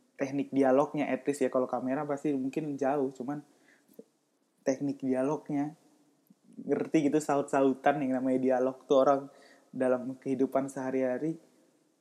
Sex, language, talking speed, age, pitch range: male, Indonesian, 115 wpm, 20-39, 130-170 Hz